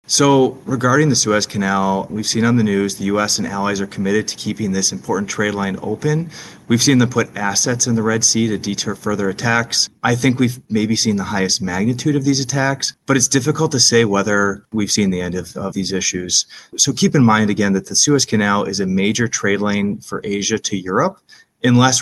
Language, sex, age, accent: English, male, 30-49, American